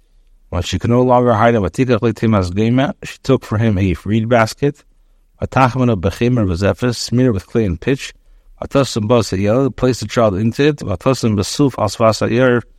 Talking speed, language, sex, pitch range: 190 wpm, English, male, 100-125 Hz